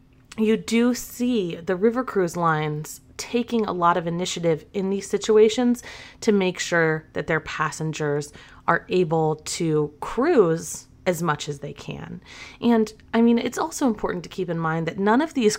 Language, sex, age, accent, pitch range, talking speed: English, female, 30-49, American, 160-220 Hz, 170 wpm